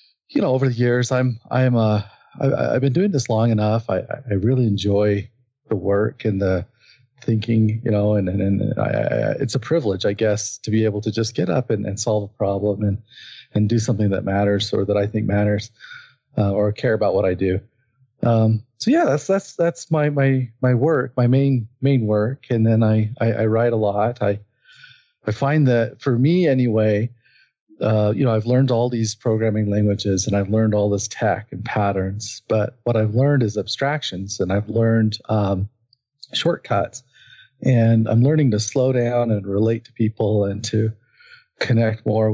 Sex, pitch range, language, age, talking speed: male, 105-125 Hz, English, 40-59, 195 wpm